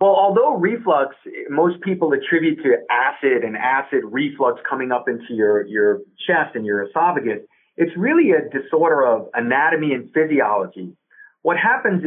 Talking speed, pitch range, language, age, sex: 150 wpm, 130-215 Hz, English, 40-59, male